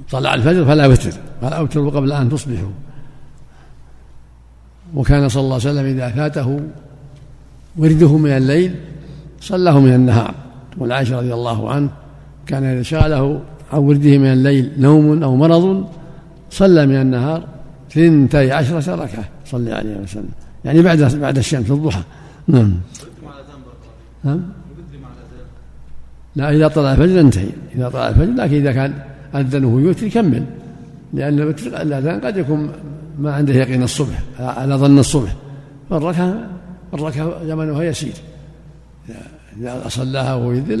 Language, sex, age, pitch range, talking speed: Arabic, male, 60-79, 130-155 Hz, 125 wpm